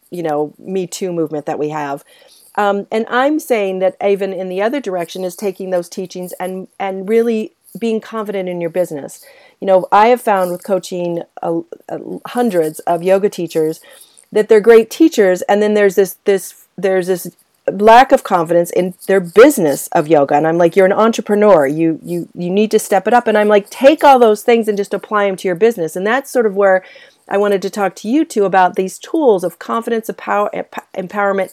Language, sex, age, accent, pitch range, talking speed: English, female, 40-59, American, 175-215 Hz, 210 wpm